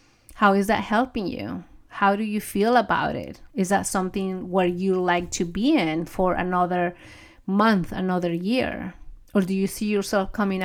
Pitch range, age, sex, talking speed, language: 185-230 Hz, 30-49, female, 175 wpm, English